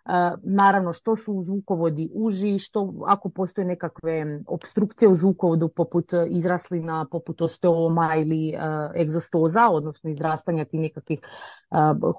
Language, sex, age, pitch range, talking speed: English, female, 30-49, 170-215 Hz, 125 wpm